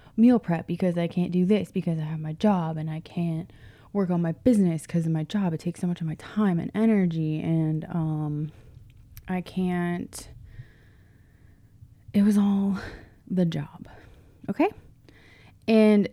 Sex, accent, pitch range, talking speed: female, American, 160-220 Hz, 160 wpm